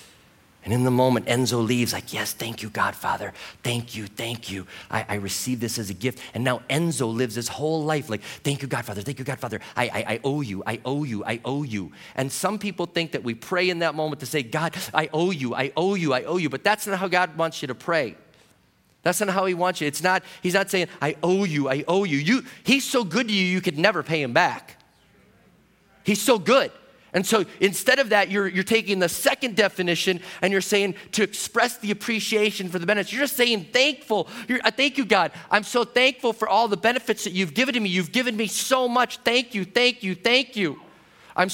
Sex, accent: male, American